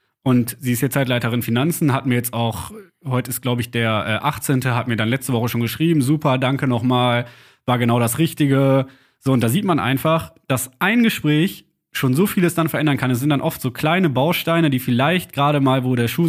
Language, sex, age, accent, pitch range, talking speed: German, male, 20-39, German, 120-145 Hz, 215 wpm